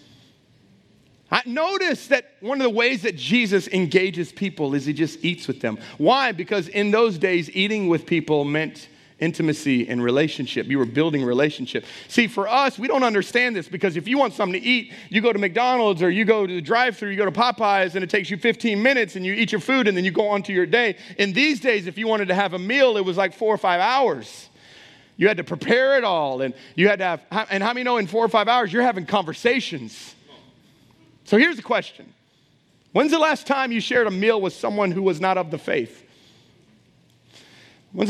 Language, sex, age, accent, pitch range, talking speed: English, male, 40-59, American, 150-225 Hz, 220 wpm